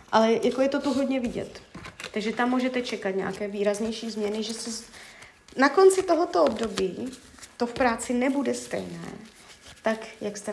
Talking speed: 150 wpm